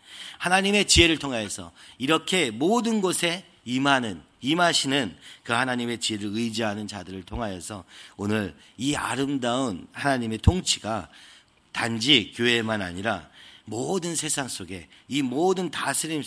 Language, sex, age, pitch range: Korean, male, 40-59, 105-140 Hz